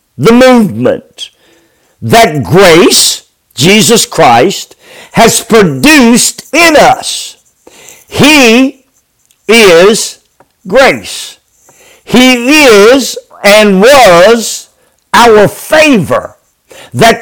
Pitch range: 205-290 Hz